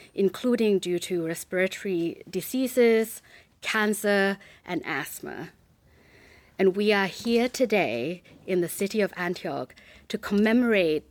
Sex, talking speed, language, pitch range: female, 110 wpm, English, 175-220 Hz